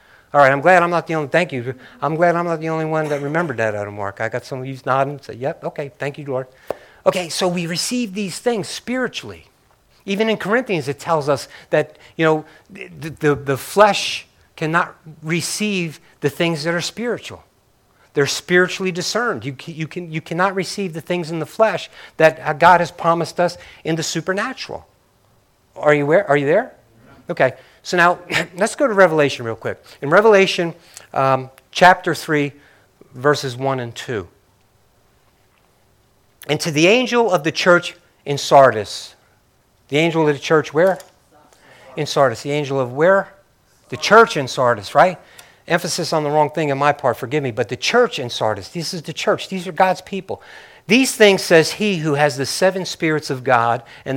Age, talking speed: 50-69, 190 wpm